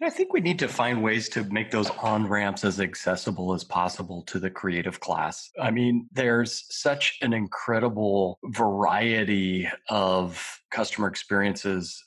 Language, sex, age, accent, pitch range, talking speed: English, male, 30-49, American, 100-120 Hz, 145 wpm